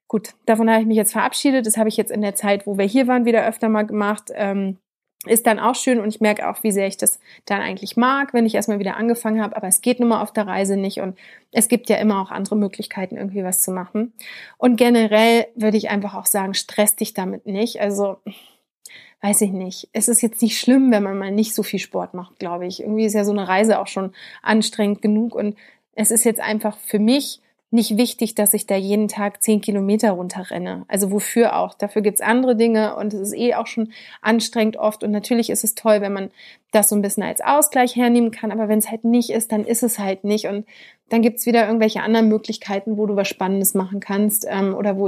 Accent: German